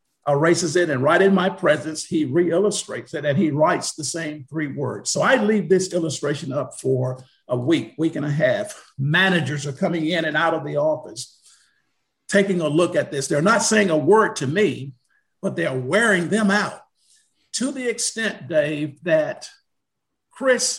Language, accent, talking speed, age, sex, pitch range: English, American, 180 wpm, 50-69, male, 140-190 Hz